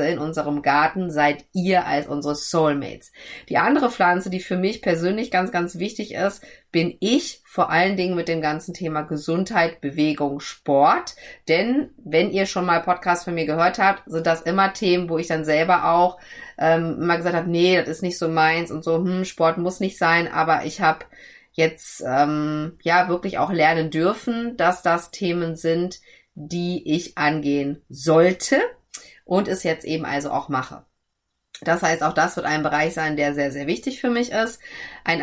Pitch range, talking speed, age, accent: 155-185 Hz, 185 wpm, 30-49, German